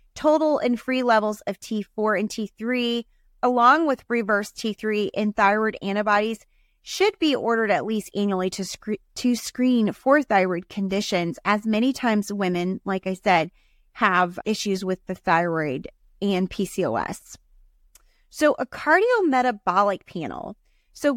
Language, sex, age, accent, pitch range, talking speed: English, female, 30-49, American, 190-240 Hz, 130 wpm